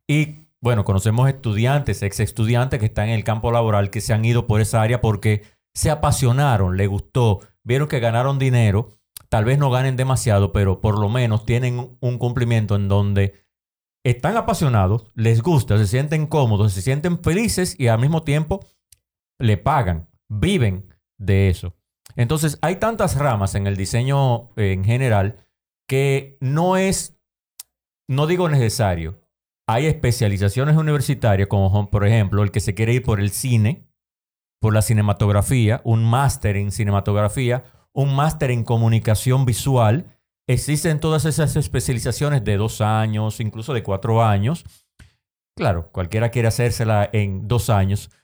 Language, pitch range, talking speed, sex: Spanish, 105-135 Hz, 150 wpm, male